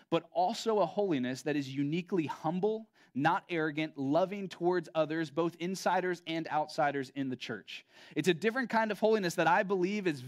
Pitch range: 145-185 Hz